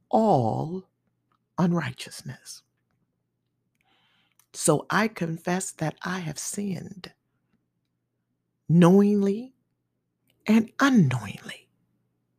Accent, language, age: American, English, 50-69